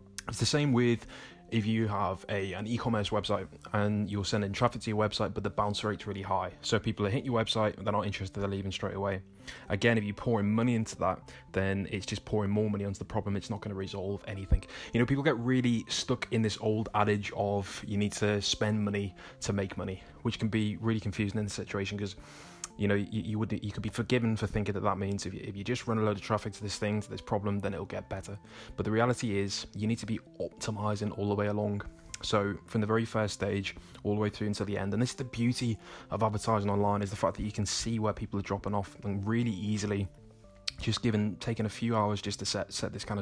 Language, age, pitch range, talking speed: English, 20-39, 100-110 Hz, 250 wpm